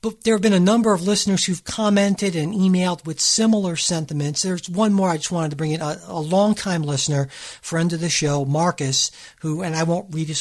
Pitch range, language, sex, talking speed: 155-195 Hz, English, male, 225 wpm